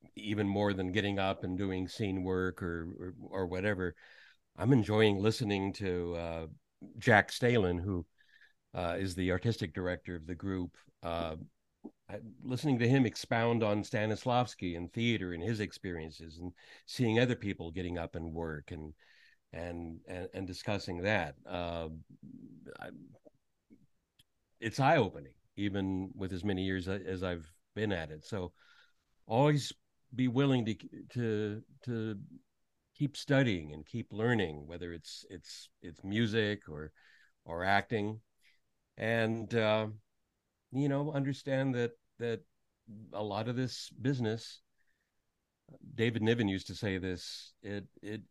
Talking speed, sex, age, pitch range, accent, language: 135 wpm, male, 60-79, 90-115 Hz, American, English